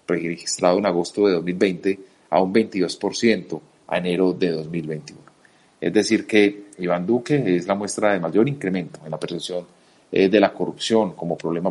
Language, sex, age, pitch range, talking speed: Spanish, male, 40-59, 85-105 Hz, 155 wpm